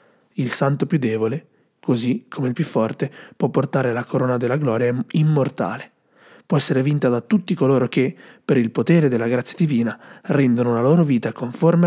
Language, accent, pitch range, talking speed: Italian, native, 125-160 Hz, 170 wpm